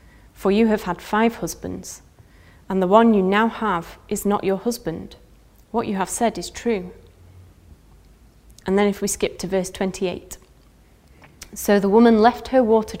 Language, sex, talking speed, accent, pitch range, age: English, female, 165 wpm, British, 170-220 Hz, 30-49